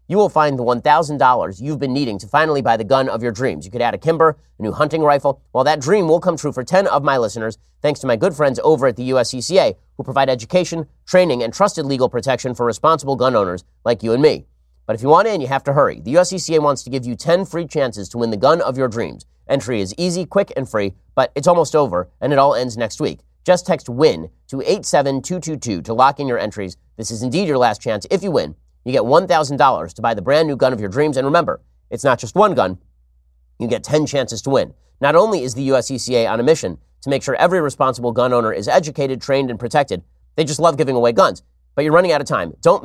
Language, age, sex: English, 30-49, male